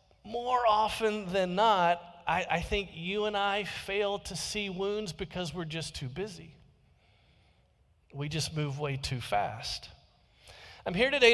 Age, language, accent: 40-59, English, American